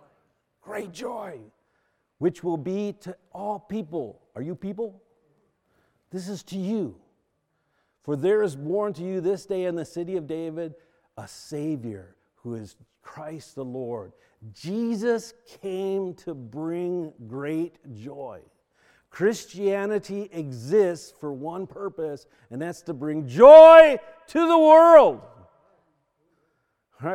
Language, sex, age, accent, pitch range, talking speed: English, male, 50-69, American, 140-200 Hz, 120 wpm